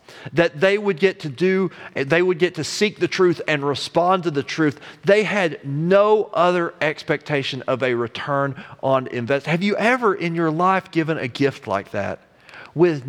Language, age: English, 40-59